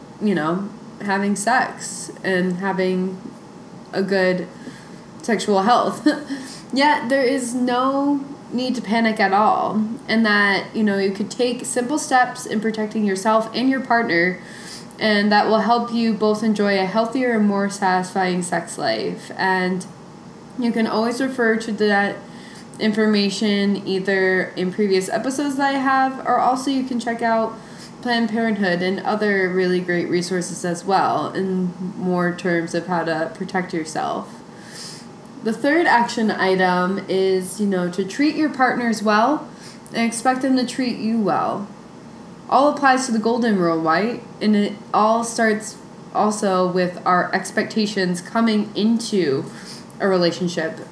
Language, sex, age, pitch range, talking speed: English, female, 20-39, 185-230 Hz, 145 wpm